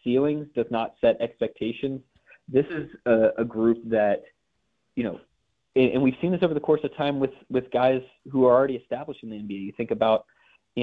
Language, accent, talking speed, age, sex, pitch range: English, American, 205 wpm, 30-49, male, 110-125 Hz